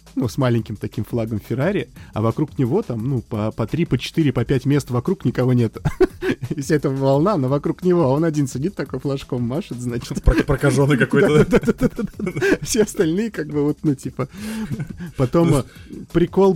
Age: 20-39